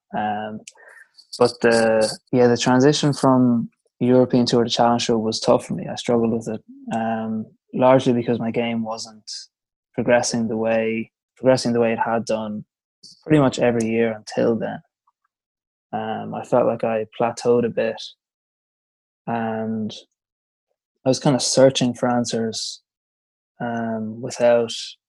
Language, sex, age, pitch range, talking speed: English, male, 20-39, 115-125 Hz, 140 wpm